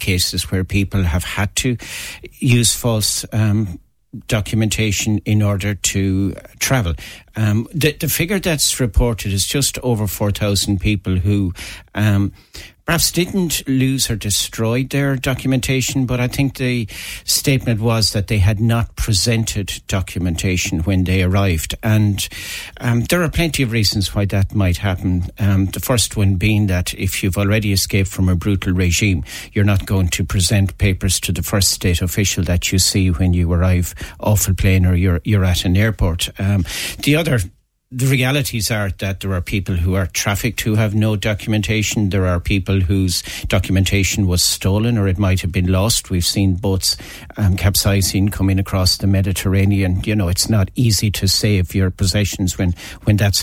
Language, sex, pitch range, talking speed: English, male, 95-115 Hz, 170 wpm